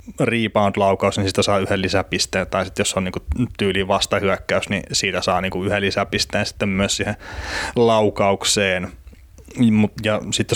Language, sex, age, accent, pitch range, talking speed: Finnish, male, 30-49, native, 95-115 Hz, 140 wpm